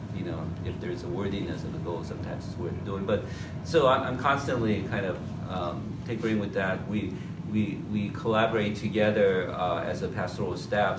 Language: English